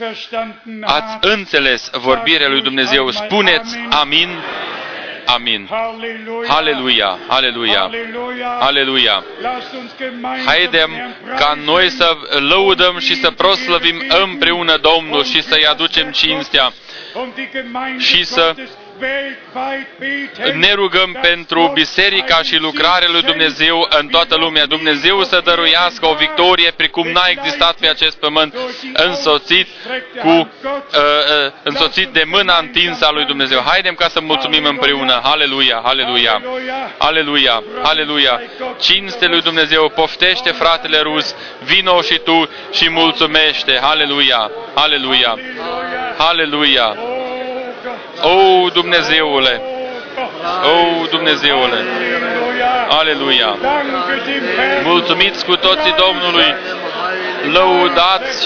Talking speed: 95 wpm